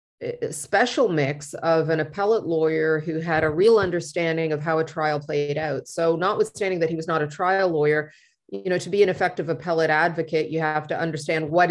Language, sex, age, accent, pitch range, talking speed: English, female, 30-49, American, 155-185 Hz, 205 wpm